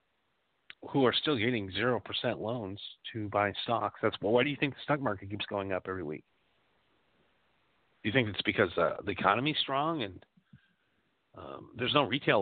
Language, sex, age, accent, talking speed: English, male, 40-59, American, 180 wpm